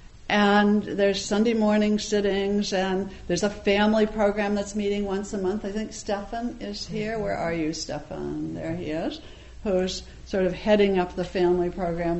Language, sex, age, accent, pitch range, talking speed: English, female, 60-79, American, 175-210 Hz, 170 wpm